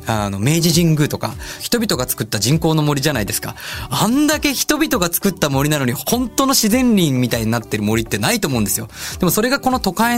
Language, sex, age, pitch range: Japanese, male, 20-39, 115-185 Hz